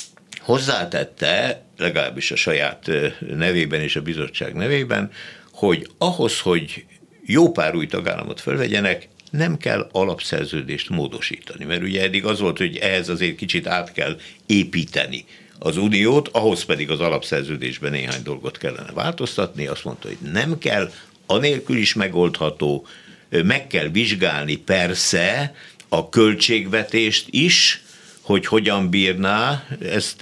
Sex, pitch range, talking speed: male, 80-110 Hz, 125 wpm